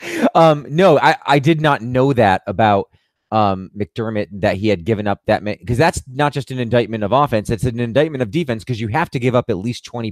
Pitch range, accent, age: 105-140 Hz, American, 30-49